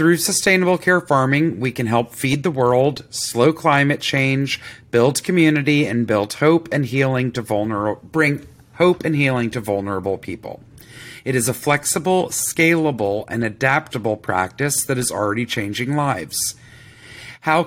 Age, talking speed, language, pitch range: 40-59, 145 wpm, English, 120-150 Hz